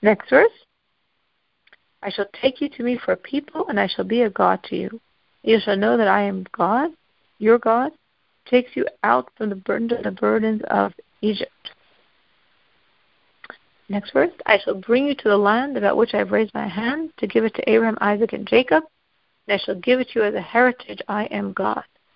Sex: female